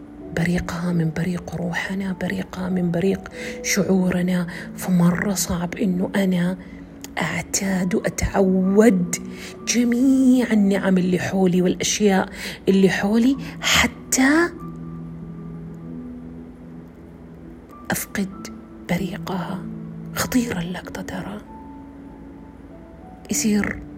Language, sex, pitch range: Arabic, female, 145-195 Hz